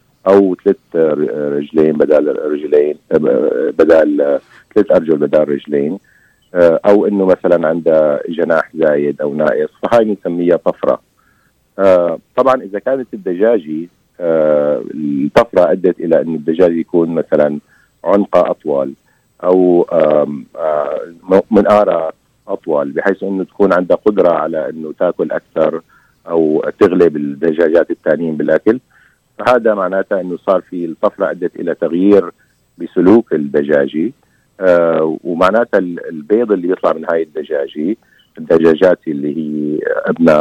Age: 50-69